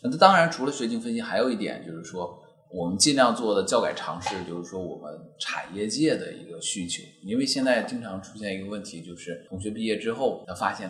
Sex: male